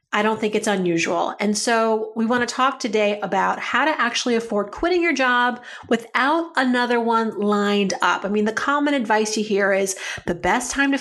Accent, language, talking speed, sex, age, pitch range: American, English, 200 wpm, female, 40-59, 200-260 Hz